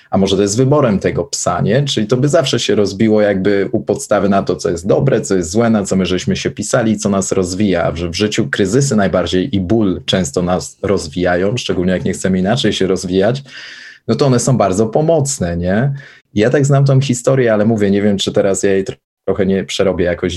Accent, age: native, 30-49